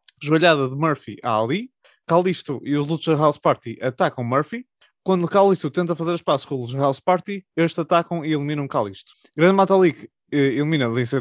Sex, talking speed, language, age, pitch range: male, 170 wpm, Portuguese, 20-39, 135-175 Hz